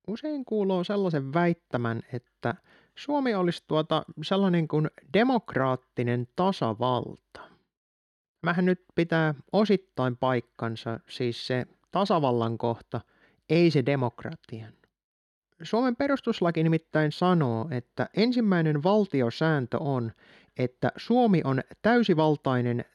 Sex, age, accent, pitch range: male, 30-49, native, 125-185 Hz